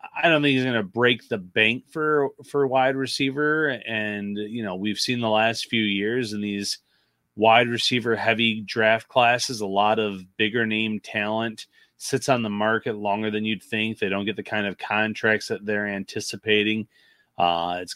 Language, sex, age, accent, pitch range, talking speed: English, male, 30-49, American, 100-120 Hz, 185 wpm